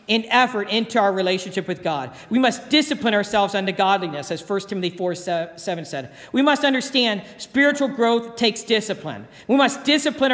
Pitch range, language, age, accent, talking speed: 180-235 Hz, English, 50-69, American, 170 wpm